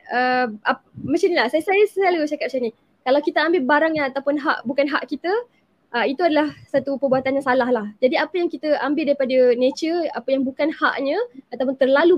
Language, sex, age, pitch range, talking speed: Malay, female, 20-39, 250-300 Hz, 185 wpm